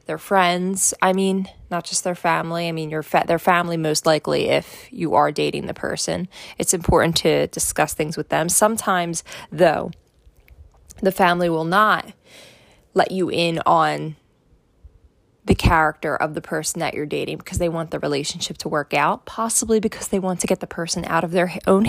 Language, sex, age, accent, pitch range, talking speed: English, female, 20-39, American, 155-185 Hz, 185 wpm